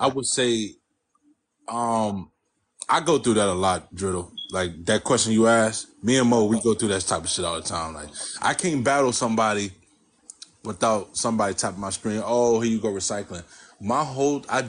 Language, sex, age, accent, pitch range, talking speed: English, male, 20-39, American, 100-125 Hz, 190 wpm